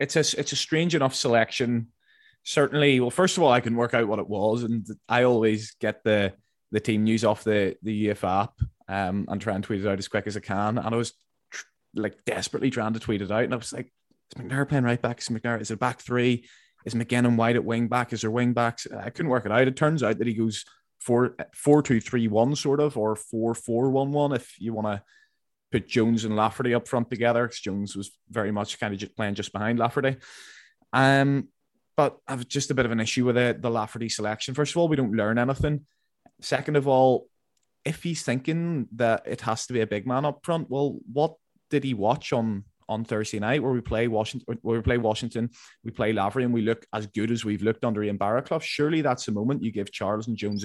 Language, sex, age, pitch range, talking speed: English, male, 20-39, 110-130 Hz, 240 wpm